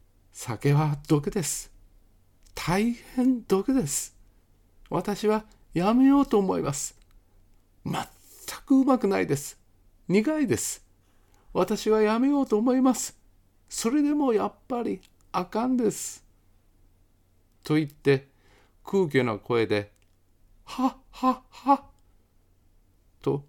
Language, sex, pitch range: Japanese, male, 95-140 Hz